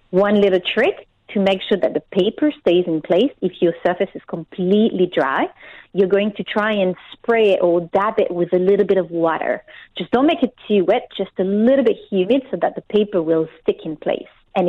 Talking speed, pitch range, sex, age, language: 220 wpm, 175-210 Hz, female, 30-49, English